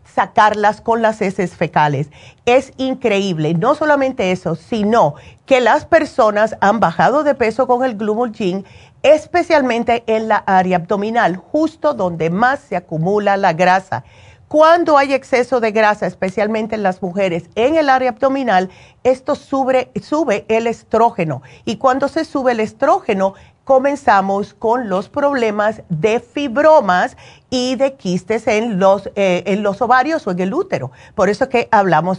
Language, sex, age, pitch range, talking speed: Spanish, female, 40-59, 190-260 Hz, 150 wpm